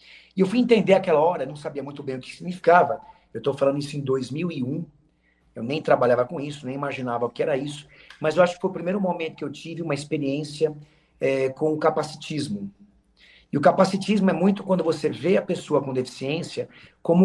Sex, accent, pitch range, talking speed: male, Brazilian, 135-175 Hz, 210 wpm